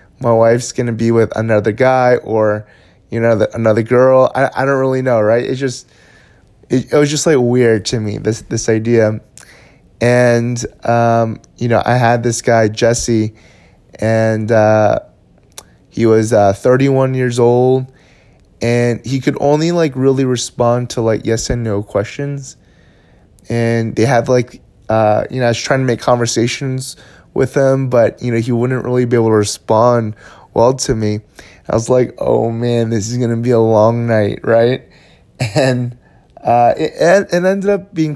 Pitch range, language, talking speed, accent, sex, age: 110-125 Hz, English, 175 wpm, American, male, 20-39